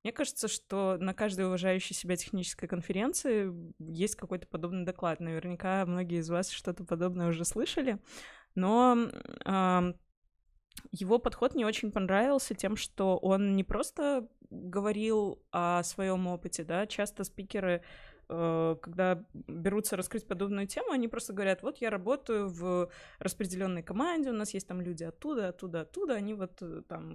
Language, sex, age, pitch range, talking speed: Russian, female, 20-39, 175-210 Hz, 145 wpm